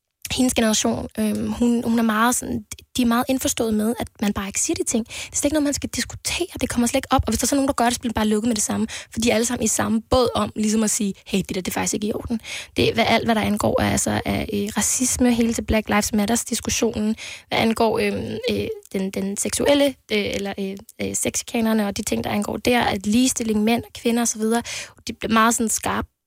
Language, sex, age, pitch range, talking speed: Danish, female, 20-39, 205-235 Hz, 265 wpm